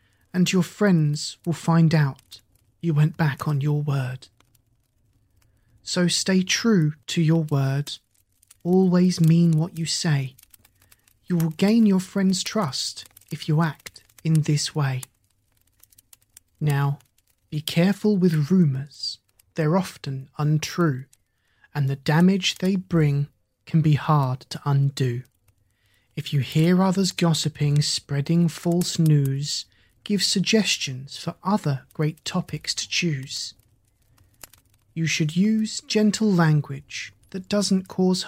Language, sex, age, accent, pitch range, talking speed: English, male, 30-49, British, 120-175 Hz, 120 wpm